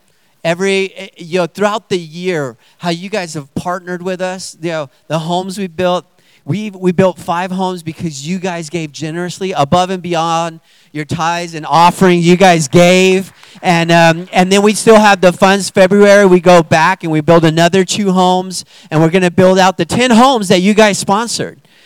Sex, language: male, English